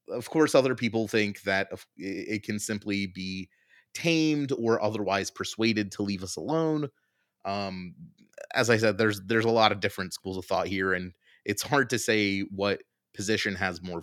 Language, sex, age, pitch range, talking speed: English, male, 30-49, 100-125 Hz, 175 wpm